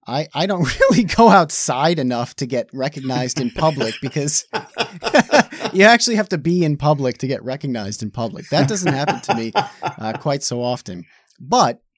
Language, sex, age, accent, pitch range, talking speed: English, male, 30-49, American, 120-155 Hz, 175 wpm